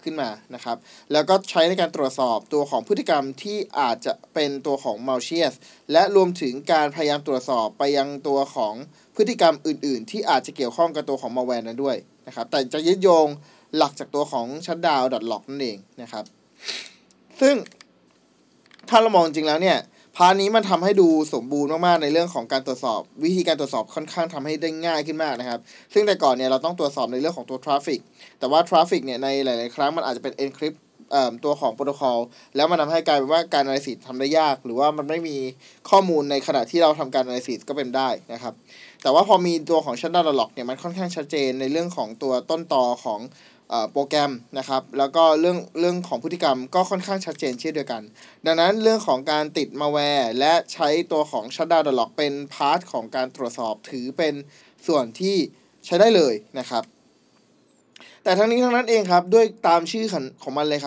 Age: 20-39